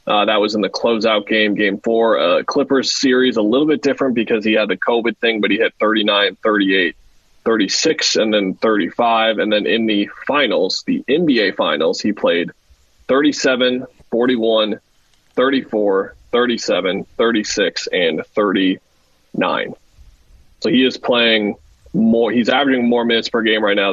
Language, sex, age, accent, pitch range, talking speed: English, male, 20-39, American, 105-125 Hz, 155 wpm